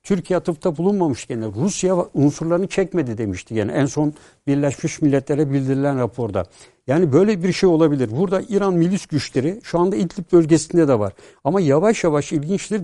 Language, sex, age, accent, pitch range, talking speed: Turkish, male, 60-79, native, 140-180 Hz, 160 wpm